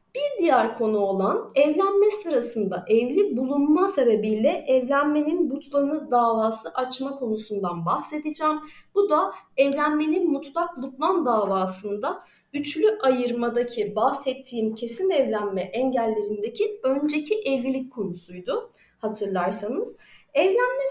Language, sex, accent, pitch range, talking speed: Turkish, female, native, 220-325 Hz, 90 wpm